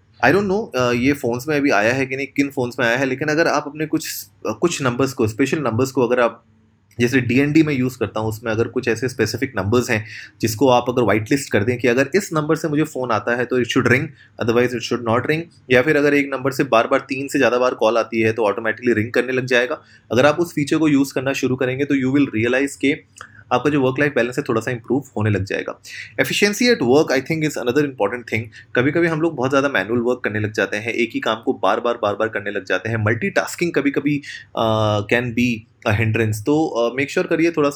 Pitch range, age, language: 115-140 Hz, 20-39, Hindi